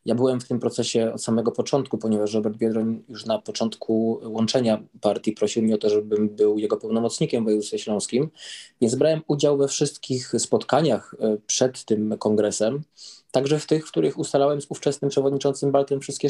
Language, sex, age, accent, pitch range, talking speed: Polish, male, 20-39, native, 115-140 Hz, 175 wpm